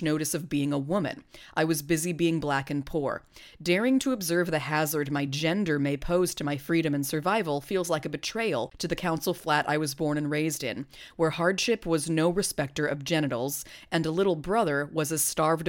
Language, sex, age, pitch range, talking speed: English, female, 30-49, 150-175 Hz, 205 wpm